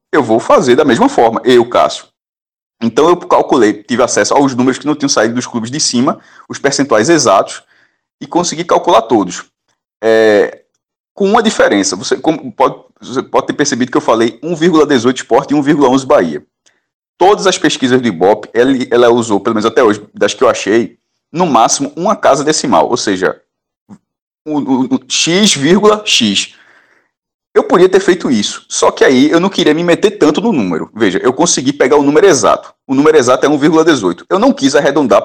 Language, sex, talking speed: Portuguese, male, 185 wpm